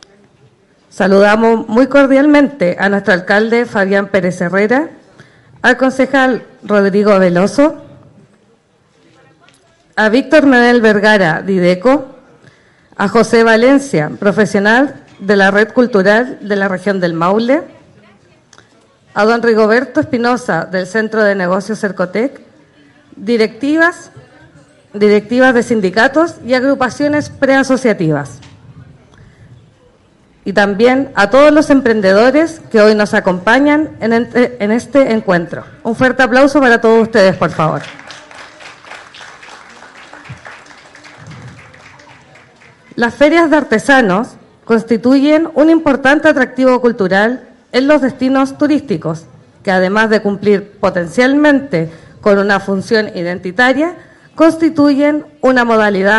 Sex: female